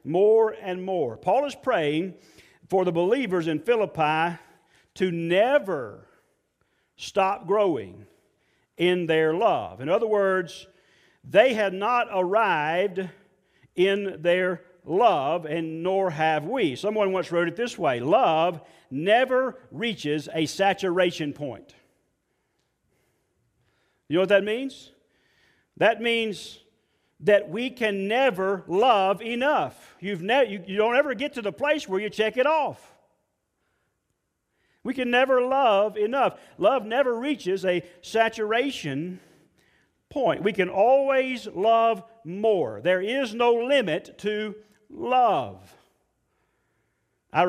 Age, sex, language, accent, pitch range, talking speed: 50-69, male, English, American, 165-225 Hz, 120 wpm